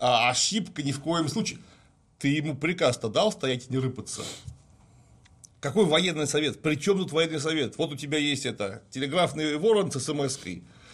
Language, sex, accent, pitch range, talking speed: Russian, male, native, 120-160 Hz, 165 wpm